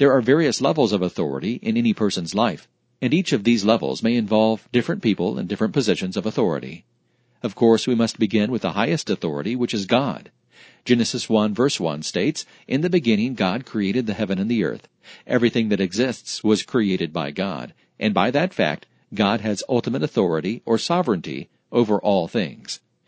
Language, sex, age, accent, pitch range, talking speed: English, male, 50-69, American, 105-125 Hz, 185 wpm